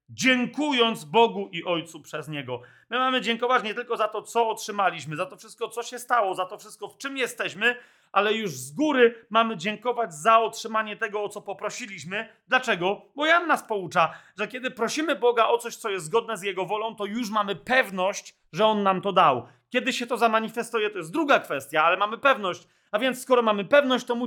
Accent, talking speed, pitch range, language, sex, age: native, 205 wpm, 210-255 Hz, Polish, male, 30-49